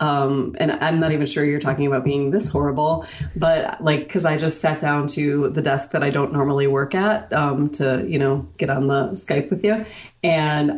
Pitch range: 140-175 Hz